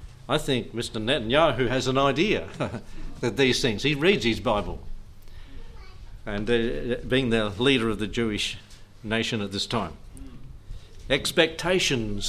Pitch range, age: 105-135 Hz, 50-69